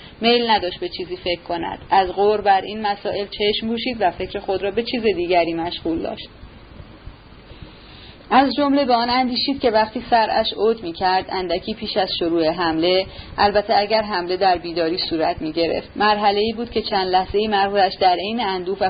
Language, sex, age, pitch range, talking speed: Persian, female, 30-49, 180-225 Hz, 180 wpm